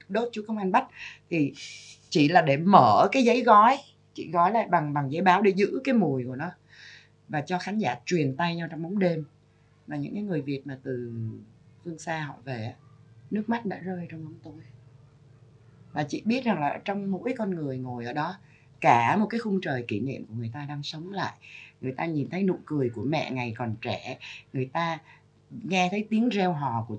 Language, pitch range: Vietnamese, 140-190 Hz